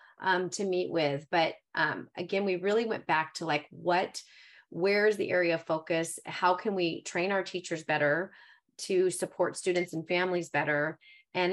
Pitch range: 165-185 Hz